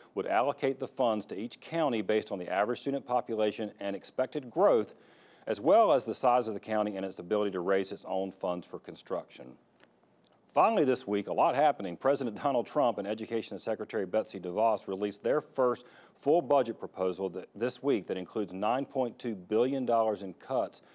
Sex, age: male, 40-59